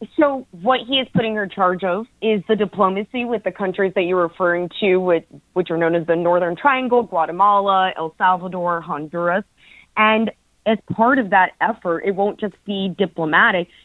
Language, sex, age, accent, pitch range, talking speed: English, female, 20-39, American, 180-215 Hz, 180 wpm